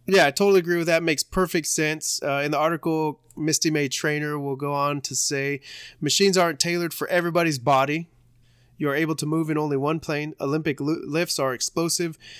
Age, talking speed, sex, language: 30-49, 195 wpm, male, English